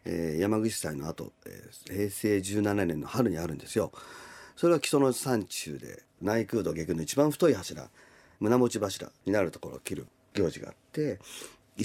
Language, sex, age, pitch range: Japanese, male, 40-59, 90-145 Hz